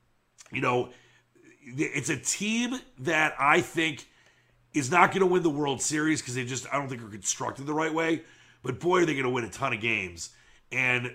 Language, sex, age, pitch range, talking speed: English, male, 30-49, 115-155 Hz, 210 wpm